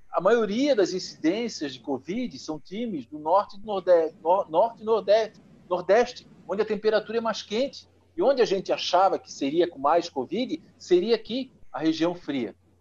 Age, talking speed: 50-69, 185 wpm